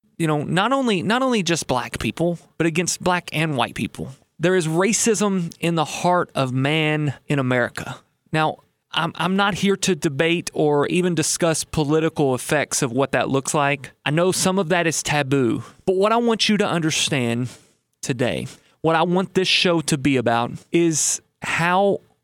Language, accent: English, American